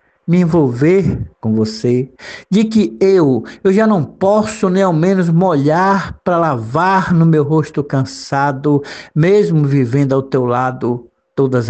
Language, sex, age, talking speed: Portuguese, male, 60-79, 140 wpm